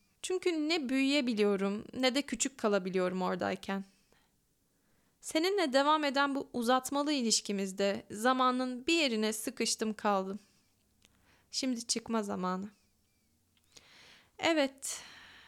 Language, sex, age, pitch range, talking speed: Turkish, female, 10-29, 200-265 Hz, 90 wpm